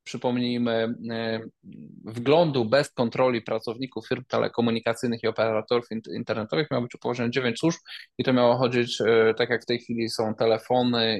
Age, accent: 20-39, native